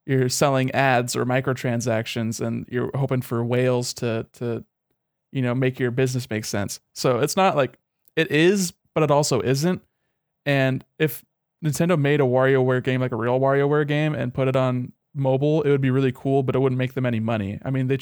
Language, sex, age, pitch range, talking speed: English, male, 20-39, 125-145 Hz, 205 wpm